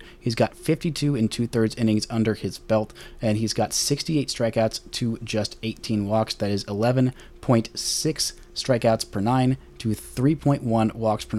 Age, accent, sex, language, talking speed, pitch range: 20-39, American, male, English, 150 wpm, 105-125 Hz